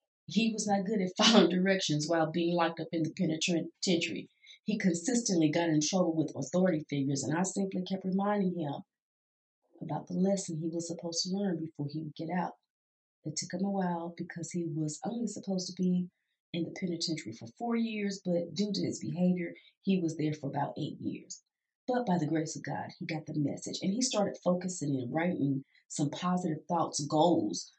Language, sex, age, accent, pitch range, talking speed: English, female, 30-49, American, 155-190 Hz, 195 wpm